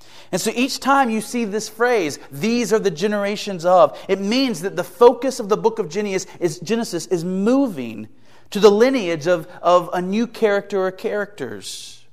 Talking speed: 175 wpm